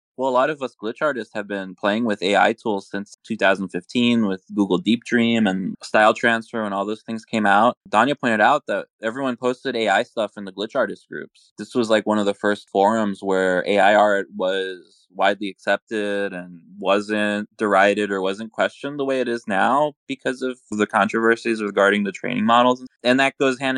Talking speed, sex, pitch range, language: 195 wpm, male, 100-115 Hz, English